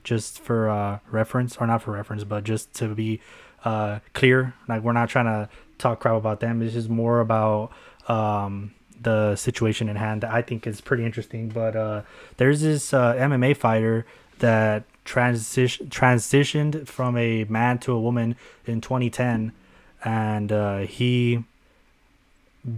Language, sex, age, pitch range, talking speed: English, male, 20-39, 110-125 Hz, 155 wpm